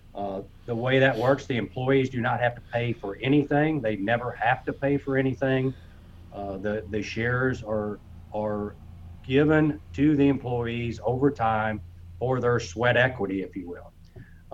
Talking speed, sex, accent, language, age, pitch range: 170 wpm, male, American, English, 40-59, 110-135 Hz